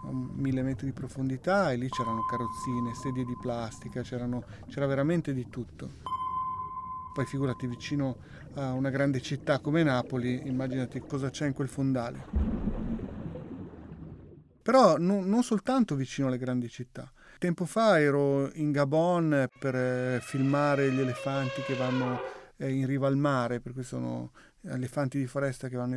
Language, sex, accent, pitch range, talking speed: Italian, male, native, 130-150 Hz, 145 wpm